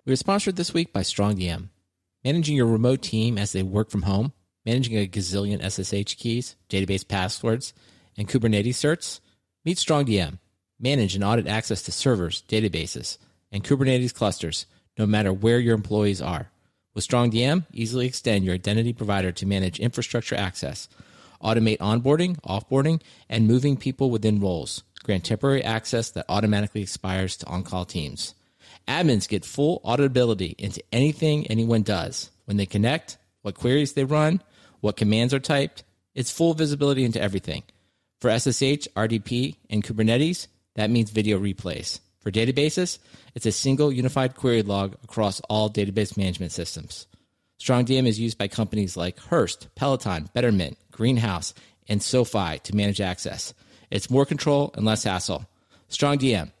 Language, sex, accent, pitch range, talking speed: English, male, American, 100-130 Hz, 150 wpm